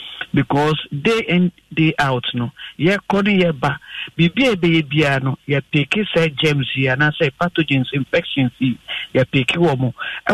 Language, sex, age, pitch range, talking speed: English, male, 50-69, 140-190 Hz, 120 wpm